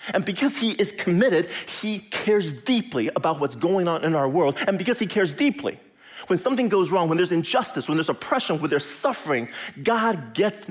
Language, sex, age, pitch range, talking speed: English, male, 40-59, 140-205 Hz, 195 wpm